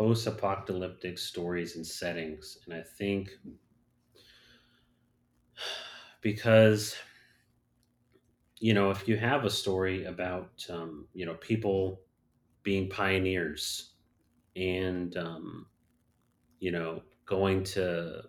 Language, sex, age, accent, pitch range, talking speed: English, male, 30-49, American, 90-115 Hz, 90 wpm